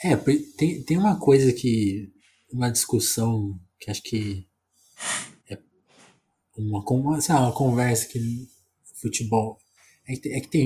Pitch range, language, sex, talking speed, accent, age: 100-125 Hz, Portuguese, male, 140 wpm, Brazilian, 20-39